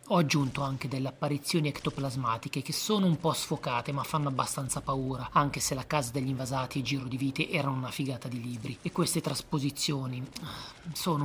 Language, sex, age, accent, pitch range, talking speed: Italian, male, 30-49, native, 130-155 Hz, 180 wpm